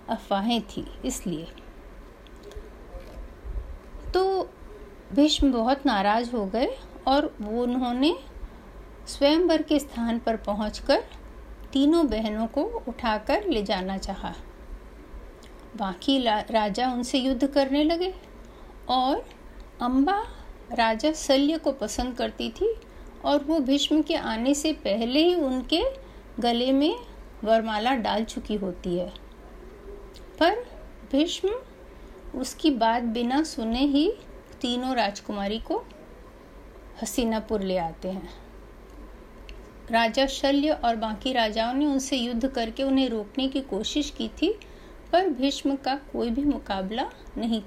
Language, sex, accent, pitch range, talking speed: Hindi, female, native, 225-295 Hz, 115 wpm